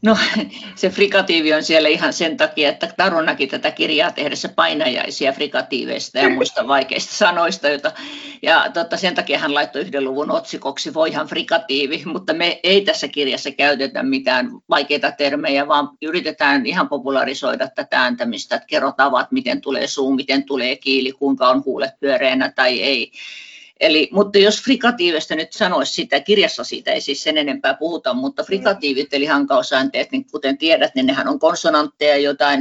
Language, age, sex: Finnish, 50-69, female